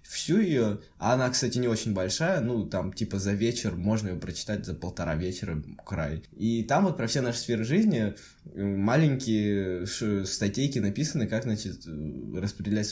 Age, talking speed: 20-39, 155 wpm